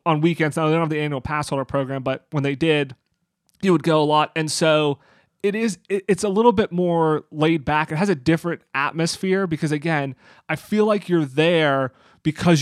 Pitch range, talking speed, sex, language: 145-175 Hz, 210 wpm, male, English